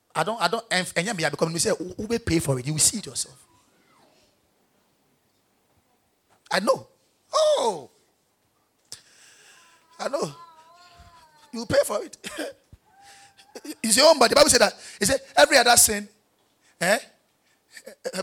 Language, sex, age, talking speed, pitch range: English, male, 30-49, 145 wpm, 180-260 Hz